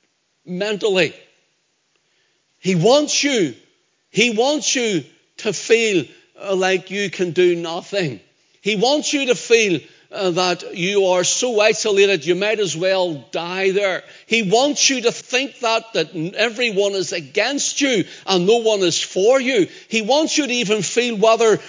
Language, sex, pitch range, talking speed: English, male, 160-225 Hz, 150 wpm